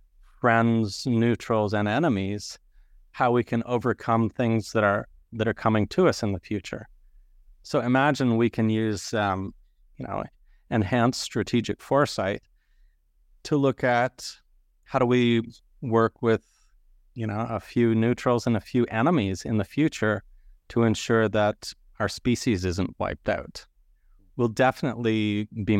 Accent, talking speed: American, 140 wpm